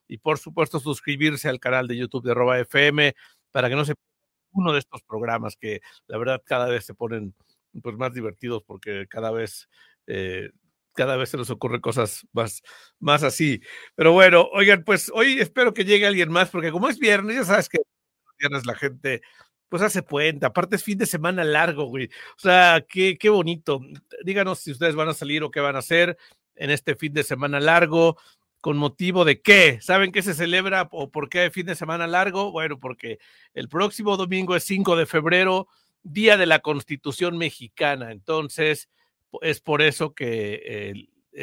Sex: male